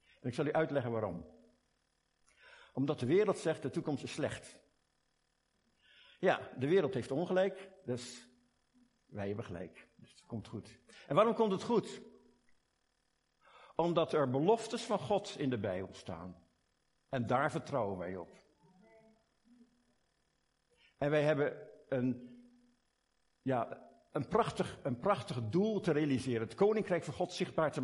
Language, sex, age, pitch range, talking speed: Dutch, male, 50-69, 120-195 Hz, 135 wpm